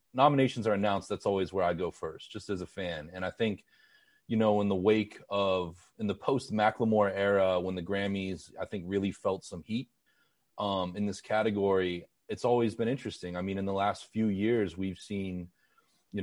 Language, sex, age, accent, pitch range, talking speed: English, male, 30-49, American, 95-110 Hz, 200 wpm